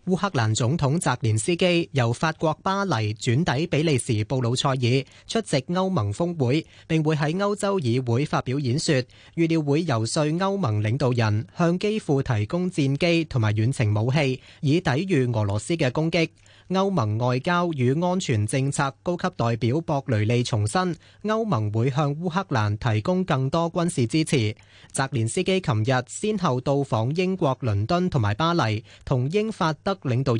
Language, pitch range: Chinese, 120-170 Hz